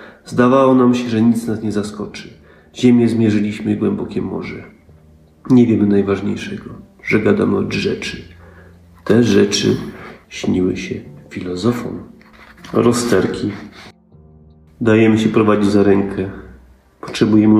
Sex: male